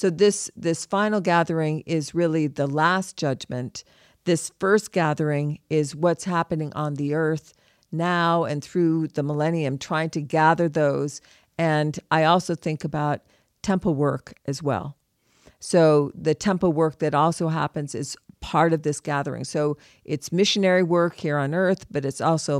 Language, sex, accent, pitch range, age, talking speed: English, female, American, 145-170 Hz, 50-69, 155 wpm